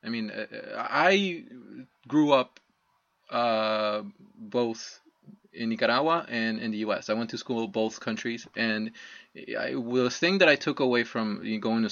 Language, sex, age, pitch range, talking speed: English, male, 20-39, 115-165 Hz, 150 wpm